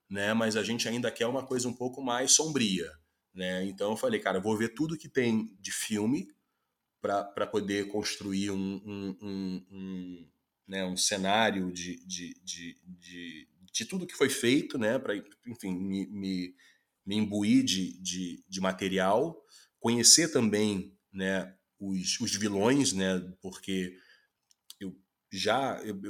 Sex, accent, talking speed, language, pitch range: male, Brazilian, 145 wpm, Portuguese, 95-130 Hz